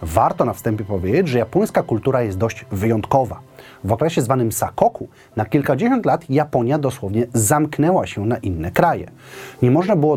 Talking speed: 160 wpm